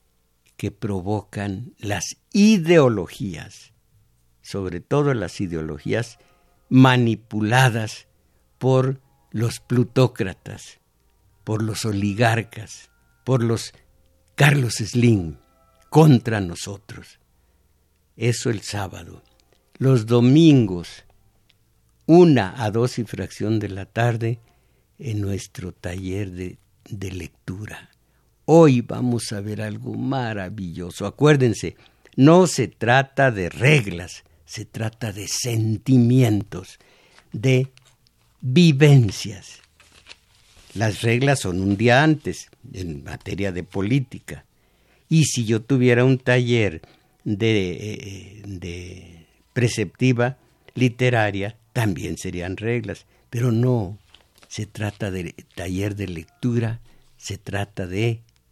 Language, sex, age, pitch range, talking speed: Spanish, male, 60-79, 95-125 Hz, 95 wpm